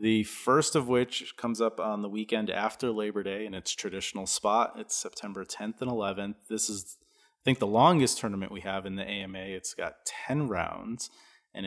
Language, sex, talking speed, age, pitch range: English, male, 195 wpm, 30-49, 95-120 Hz